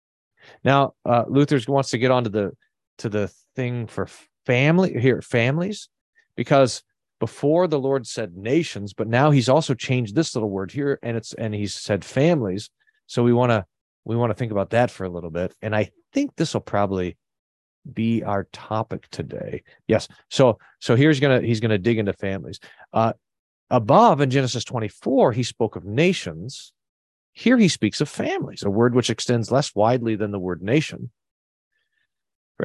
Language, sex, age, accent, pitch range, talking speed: English, male, 40-59, American, 105-145 Hz, 180 wpm